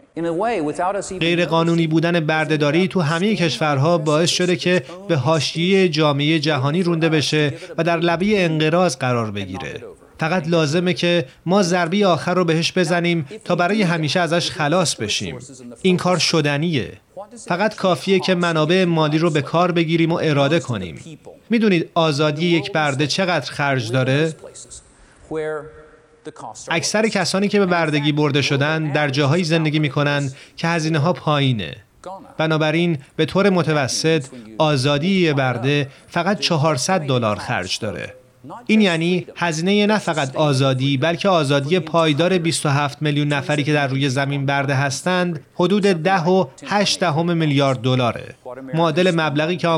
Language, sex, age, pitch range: Persian, male, 30-49, 145-175 Hz